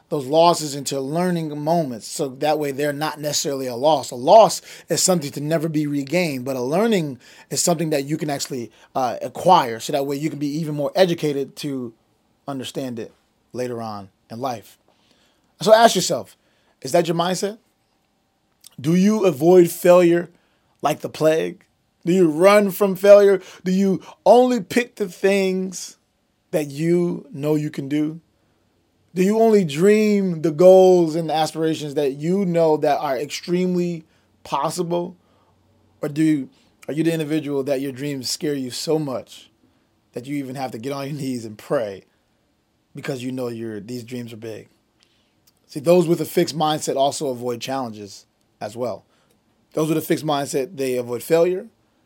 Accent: American